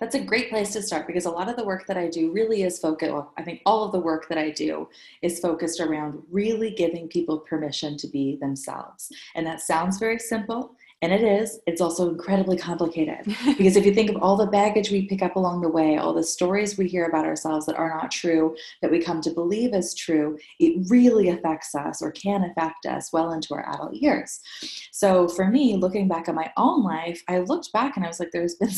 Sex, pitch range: female, 165-210 Hz